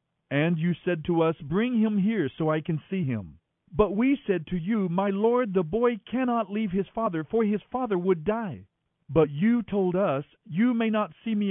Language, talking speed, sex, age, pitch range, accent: English, 210 wpm, male, 50-69, 155-210 Hz, American